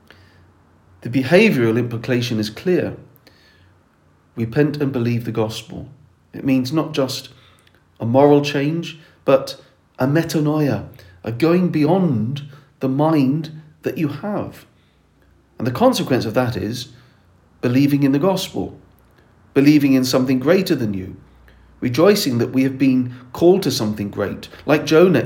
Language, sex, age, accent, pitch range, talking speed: English, male, 40-59, British, 110-145 Hz, 130 wpm